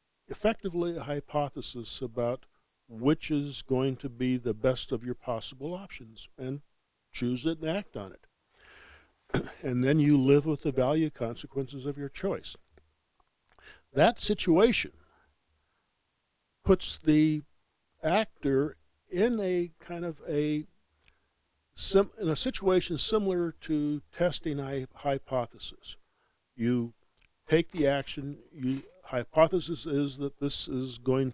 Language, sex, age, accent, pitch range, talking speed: English, male, 50-69, American, 120-155 Hz, 120 wpm